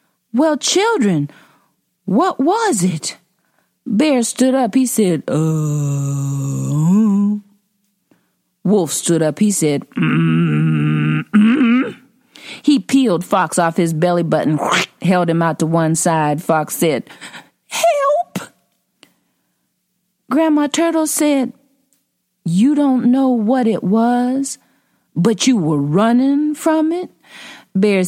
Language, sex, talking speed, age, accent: English, female, 110 wpm, 40-59, American